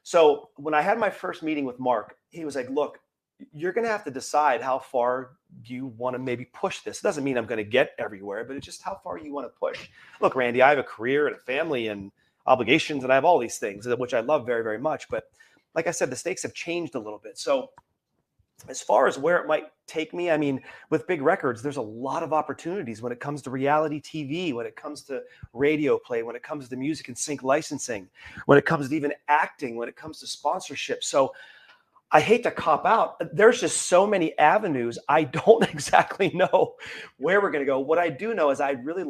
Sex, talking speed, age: male, 240 wpm, 30-49